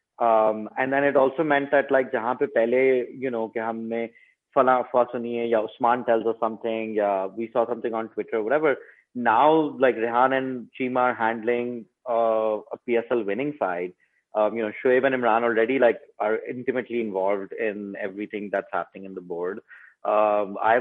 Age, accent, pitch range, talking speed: 30-49, Indian, 110-145 Hz, 160 wpm